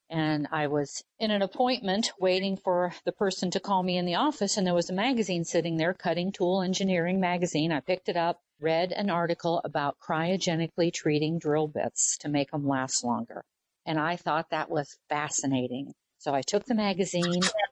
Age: 50-69